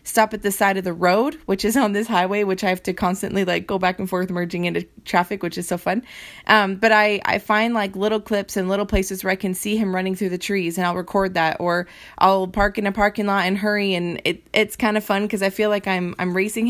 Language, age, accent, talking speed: English, 20-39, American, 270 wpm